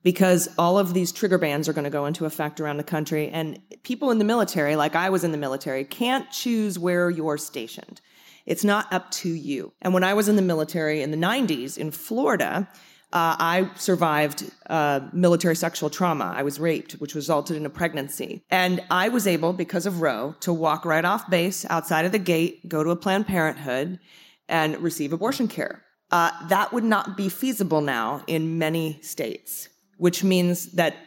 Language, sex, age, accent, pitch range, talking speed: English, female, 30-49, American, 155-200 Hz, 195 wpm